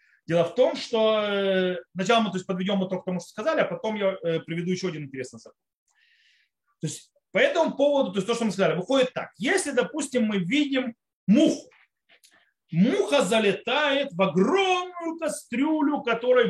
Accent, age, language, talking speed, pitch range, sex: native, 30-49, Russian, 160 wpm, 180-265 Hz, male